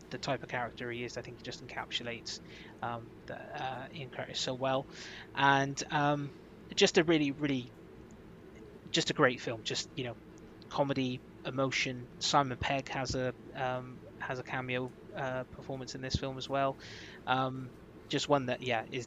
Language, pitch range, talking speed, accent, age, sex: English, 120-135 Hz, 165 wpm, British, 20-39, male